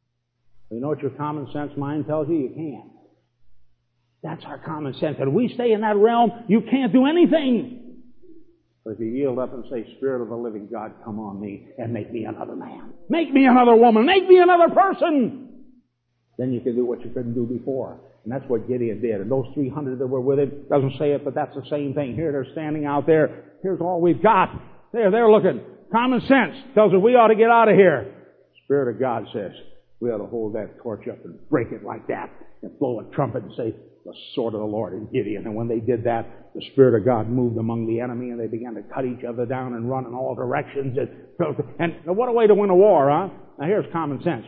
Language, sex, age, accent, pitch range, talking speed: English, male, 50-69, American, 125-175 Hz, 235 wpm